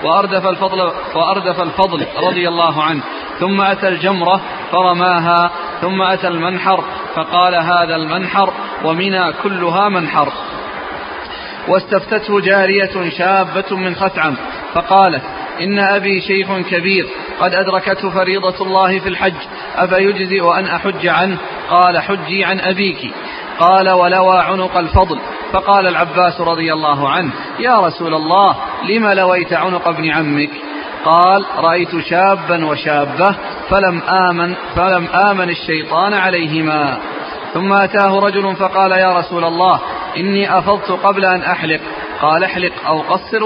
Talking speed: 120 wpm